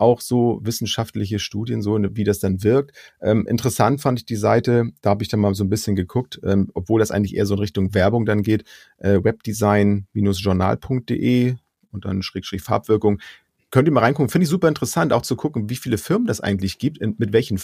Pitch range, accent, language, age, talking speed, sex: 100-125 Hz, German, German, 40-59, 210 wpm, male